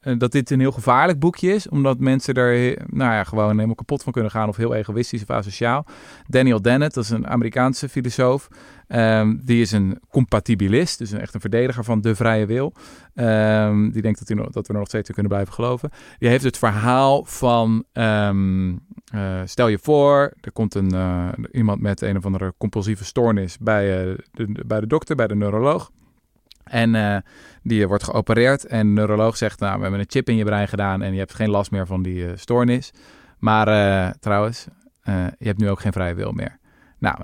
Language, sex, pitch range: Dutch, male, 100-120 Hz